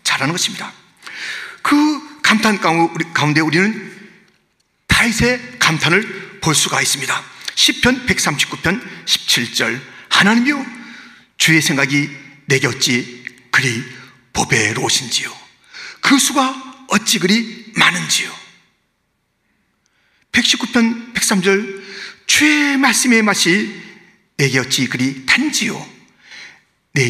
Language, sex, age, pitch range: Korean, male, 40-59, 195-295 Hz